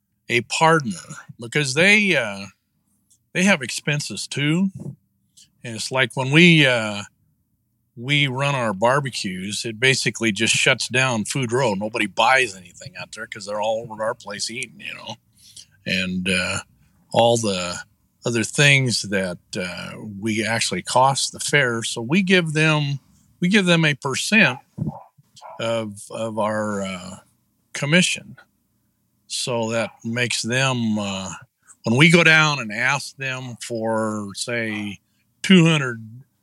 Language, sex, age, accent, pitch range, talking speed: English, male, 50-69, American, 105-140 Hz, 135 wpm